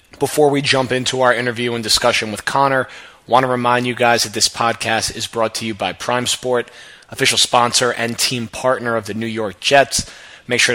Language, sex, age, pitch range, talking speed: English, male, 30-49, 115-135 Hz, 210 wpm